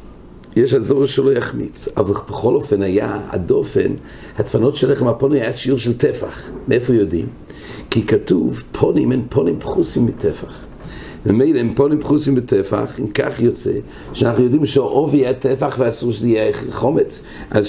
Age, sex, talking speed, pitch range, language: 60-79, male, 150 wpm, 105-135 Hz, English